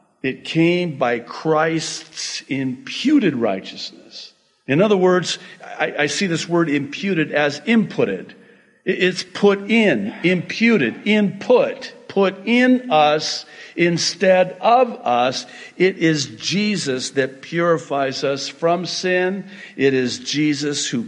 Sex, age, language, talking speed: male, 50-69, English, 115 wpm